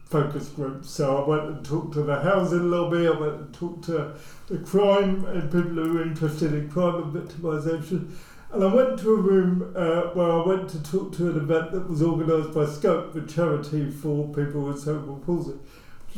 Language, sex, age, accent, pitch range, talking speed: English, male, 50-69, British, 155-185 Hz, 205 wpm